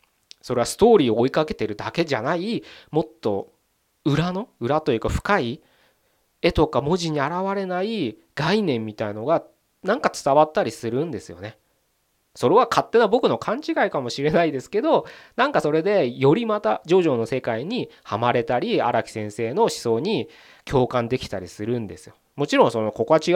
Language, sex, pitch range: Japanese, male, 115-190 Hz